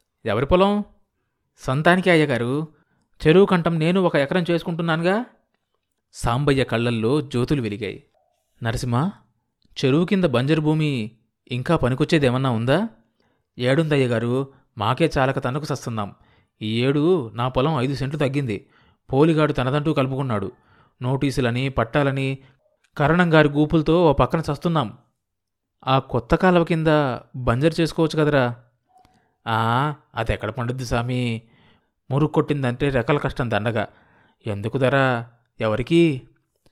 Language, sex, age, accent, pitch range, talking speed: Telugu, male, 30-49, native, 120-160 Hz, 95 wpm